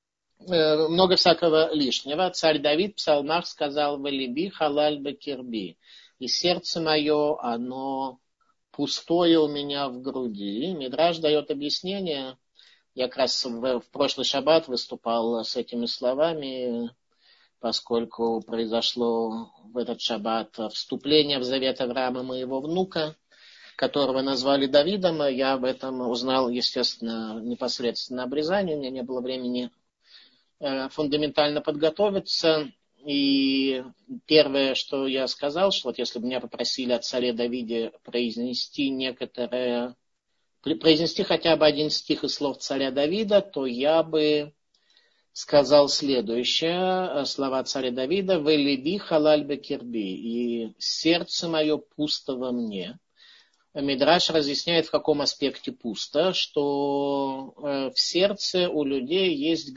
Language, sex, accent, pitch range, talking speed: Russian, male, native, 125-155 Hz, 115 wpm